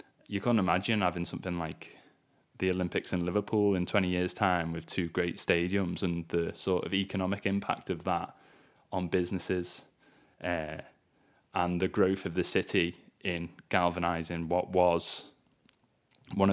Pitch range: 90-100 Hz